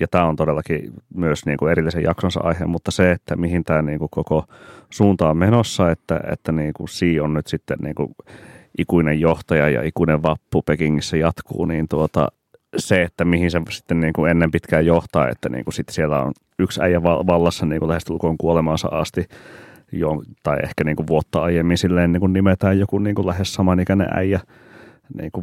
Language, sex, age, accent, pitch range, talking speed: Finnish, male, 30-49, native, 80-90 Hz, 170 wpm